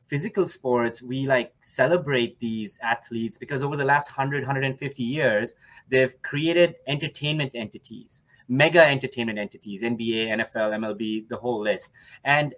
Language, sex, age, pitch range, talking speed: English, male, 20-39, 120-145 Hz, 135 wpm